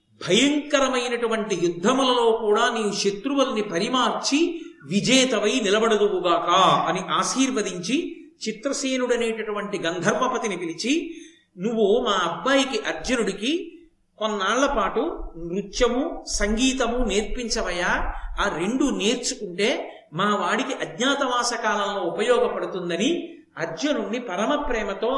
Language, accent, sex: Telugu, native, male